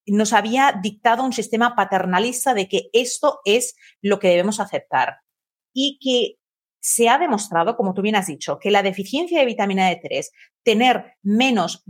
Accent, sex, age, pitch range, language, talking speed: Spanish, female, 40-59, 190-250 Hz, Spanish, 160 wpm